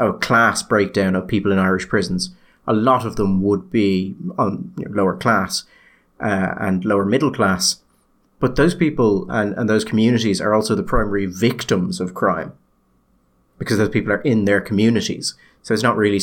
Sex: male